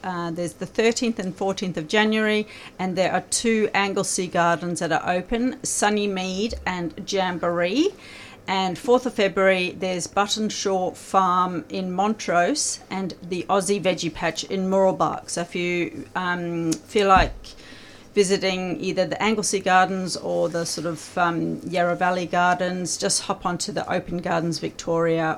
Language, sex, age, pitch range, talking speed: English, female, 40-59, 175-215 Hz, 150 wpm